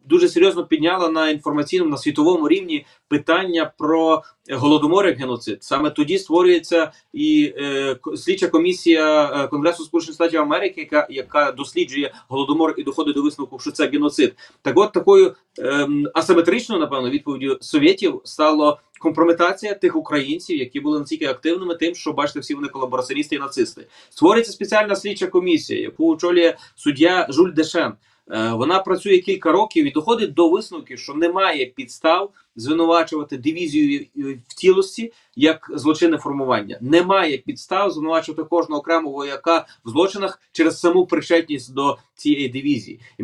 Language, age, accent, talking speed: Ukrainian, 30-49, native, 135 wpm